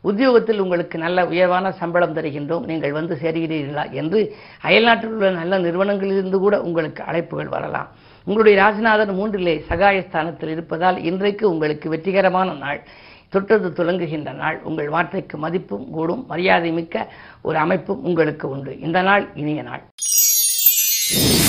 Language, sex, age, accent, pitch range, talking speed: Tamil, female, 50-69, native, 160-195 Hz, 125 wpm